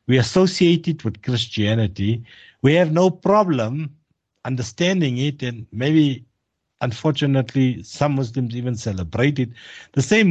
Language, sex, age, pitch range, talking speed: English, male, 60-79, 110-150 Hz, 120 wpm